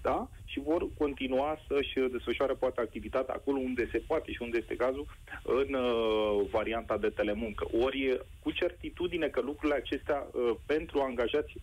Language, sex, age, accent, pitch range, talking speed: Romanian, male, 30-49, native, 125-185 Hz, 160 wpm